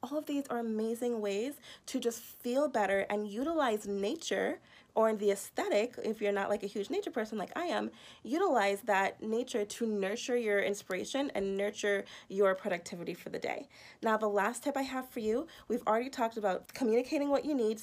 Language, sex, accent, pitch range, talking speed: English, female, American, 205-260 Hz, 195 wpm